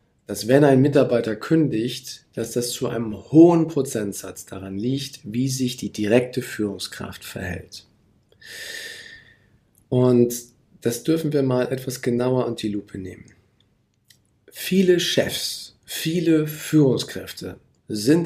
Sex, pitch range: male, 110-150 Hz